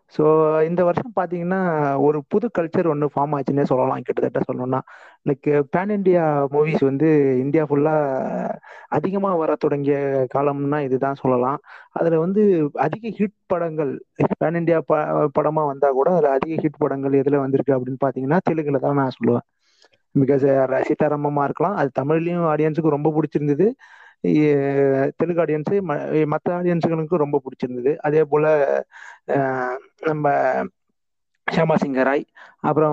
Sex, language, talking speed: male, Tamil, 125 wpm